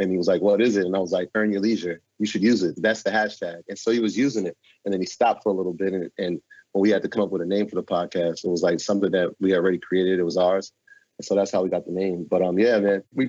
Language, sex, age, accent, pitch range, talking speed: English, male, 30-49, American, 90-105 Hz, 325 wpm